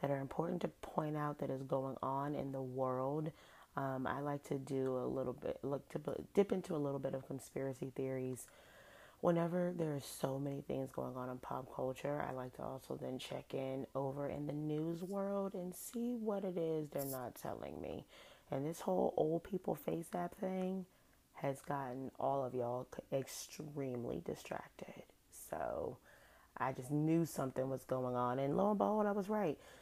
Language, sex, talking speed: English, female, 190 wpm